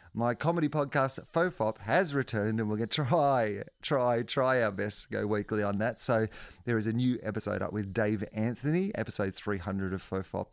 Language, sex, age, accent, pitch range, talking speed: English, male, 30-49, Australian, 100-130 Hz, 205 wpm